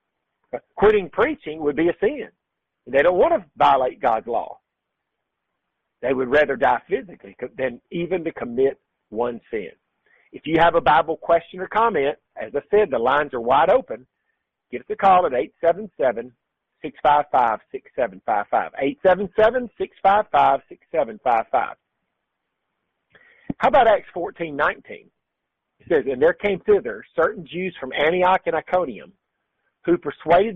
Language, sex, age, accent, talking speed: English, male, 50-69, American, 130 wpm